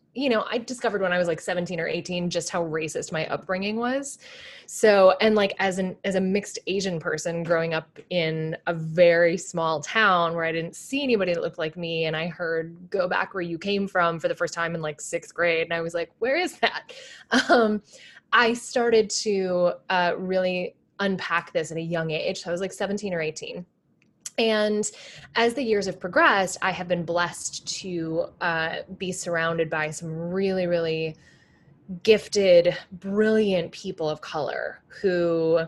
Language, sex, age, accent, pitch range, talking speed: English, female, 20-39, American, 165-200 Hz, 185 wpm